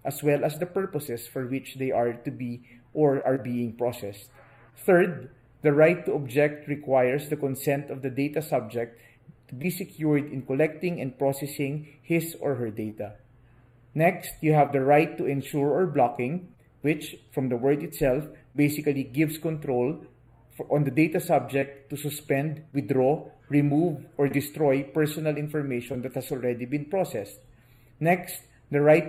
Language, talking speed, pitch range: English, 155 wpm, 130-155 Hz